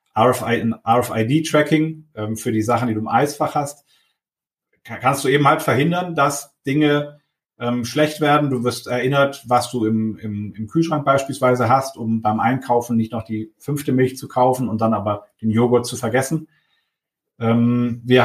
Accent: German